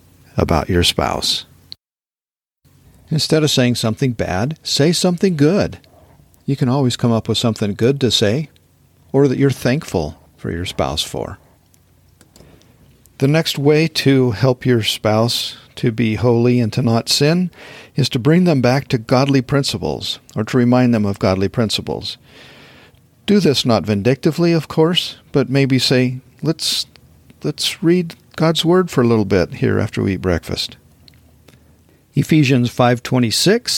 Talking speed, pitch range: 145 wpm, 110-140 Hz